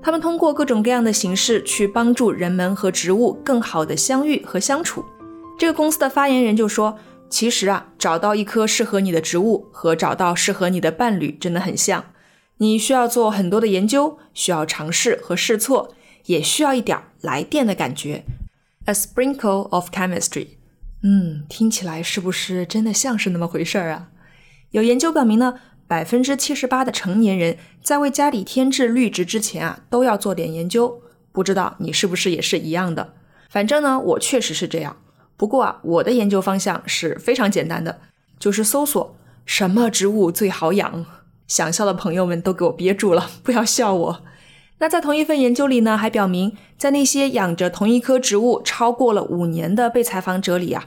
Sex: female